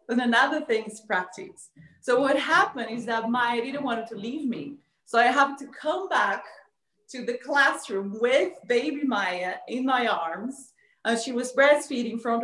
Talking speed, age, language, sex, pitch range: 180 wpm, 30-49, English, female, 200-245 Hz